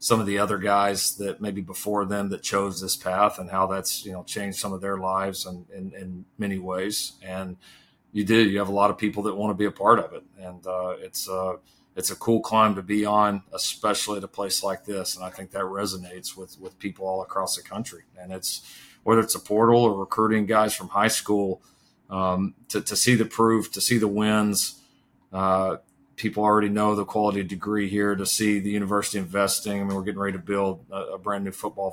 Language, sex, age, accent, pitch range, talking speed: English, male, 40-59, American, 95-105 Hz, 225 wpm